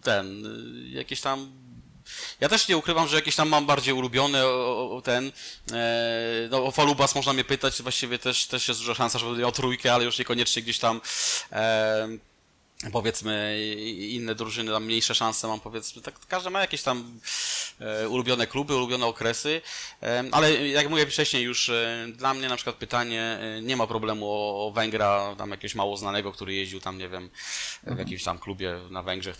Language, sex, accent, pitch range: Polish, male, native, 105-130 Hz